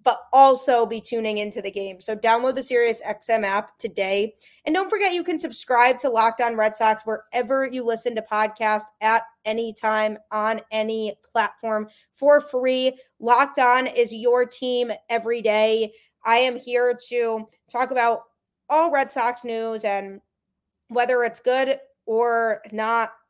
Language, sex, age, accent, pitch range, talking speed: English, female, 20-39, American, 210-245 Hz, 155 wpm